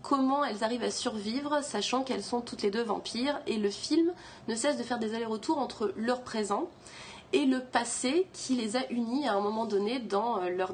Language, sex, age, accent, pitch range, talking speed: French, female, 30-49, French, 200-265 Hz, 205 wpm